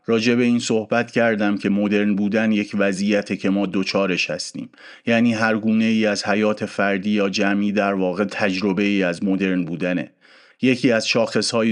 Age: 30-49